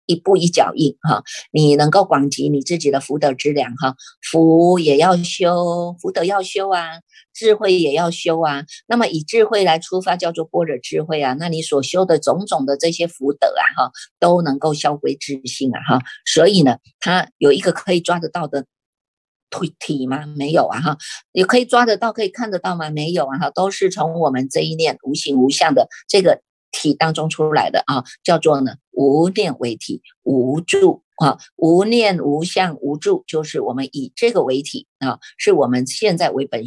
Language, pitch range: Chinese, 150-200 Hz